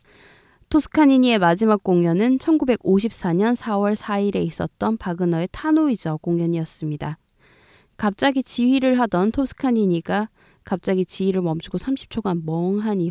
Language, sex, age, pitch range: Korean, female, 20-39, 160-215 Hz